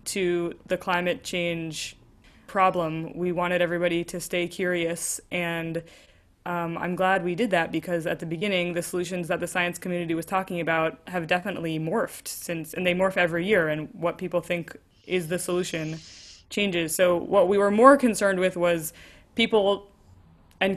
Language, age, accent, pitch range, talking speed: English, 20-39, American, 170-190 Hz, 170 wpm